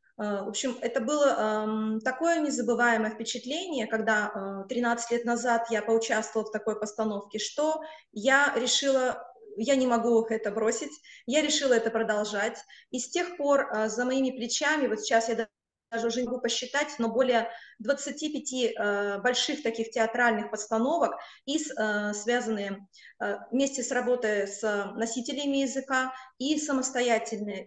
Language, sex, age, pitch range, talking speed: Russian, female, 20-39, 220-270 Hz, 130 wpm